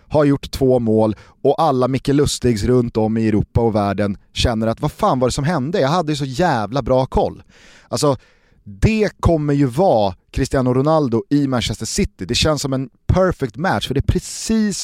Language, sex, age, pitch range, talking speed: Swedish, male, 30-49, 115-145 Hz, 200 wpm